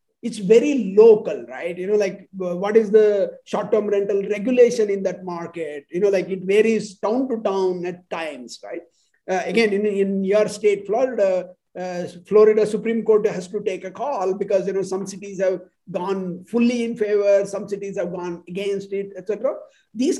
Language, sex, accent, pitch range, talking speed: English, male, Indian, 190-230 Hz, 185 wpm